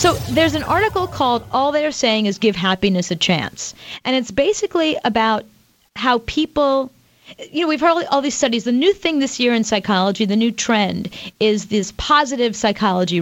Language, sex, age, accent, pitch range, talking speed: English, female, 30-49, American, 205-280 Hz, 180 wpm